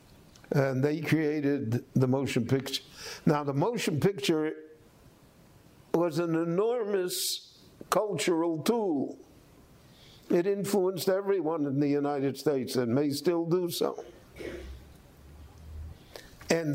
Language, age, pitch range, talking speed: English, 60-79, 135-170 Hz, 100 wpm